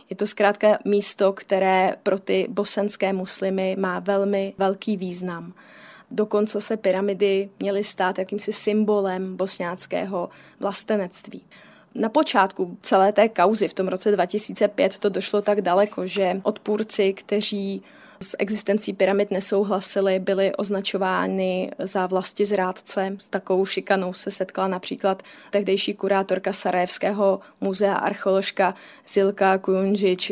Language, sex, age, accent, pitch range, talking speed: Czech, female, 20-39, native, 190-205 Hz, 120 wpm